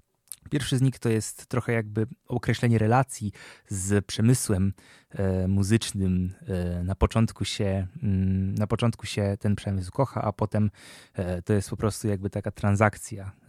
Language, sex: Polish, male